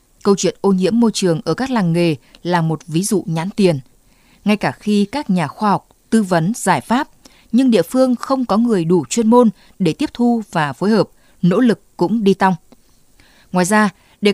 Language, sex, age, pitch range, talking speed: Vietnamese, female, 20-39, 175-230 Hz, 210 wpm